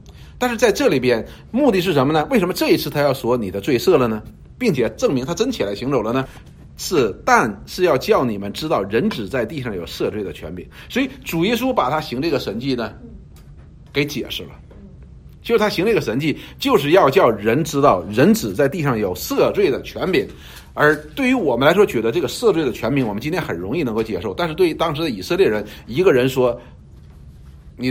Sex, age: male, 50-69